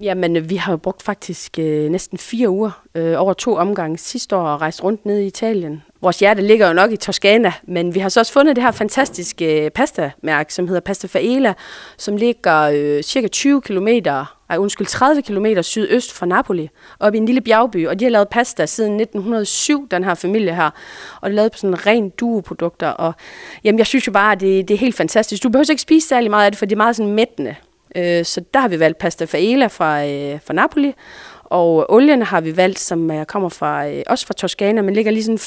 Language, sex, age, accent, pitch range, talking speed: Danish, female, 30-49, native, 165-220 Hz, 220 wpm